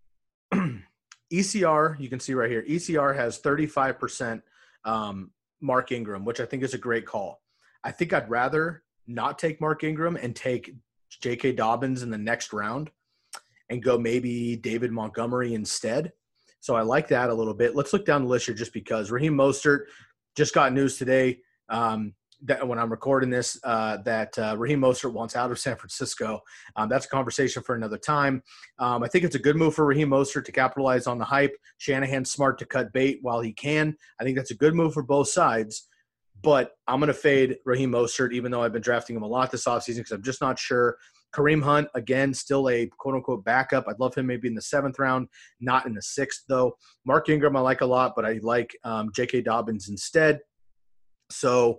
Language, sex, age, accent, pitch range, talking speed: English, male, 30-49, American, 115-140 Hz, 200 wpm